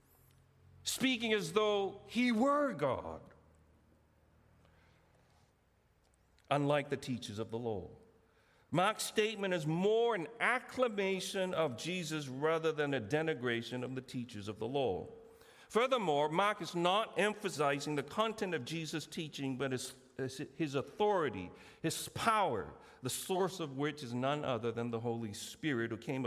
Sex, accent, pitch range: male, American, 115-165 Hz